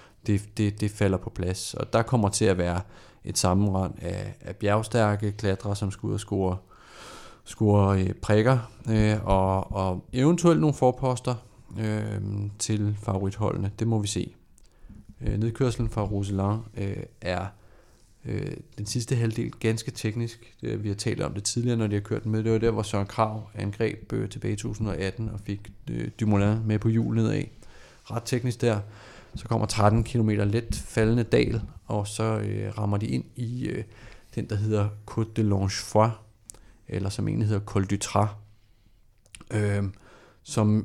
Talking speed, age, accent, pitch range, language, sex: 160 wpm, 30-49, native, 100-115 Hz, Danish, male